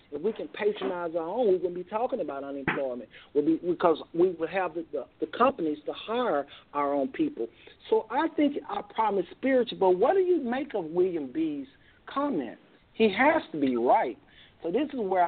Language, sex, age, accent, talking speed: English, male, 50-69, American, 205 wpm